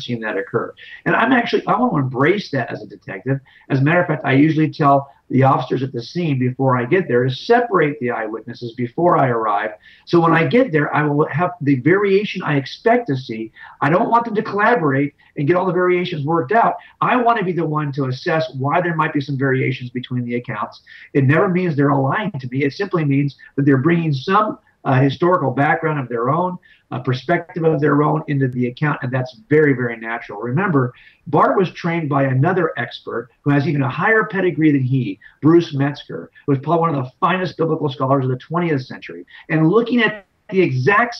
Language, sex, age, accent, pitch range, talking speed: English, male, 50-69, American, 130-175 Hz, 220 wpm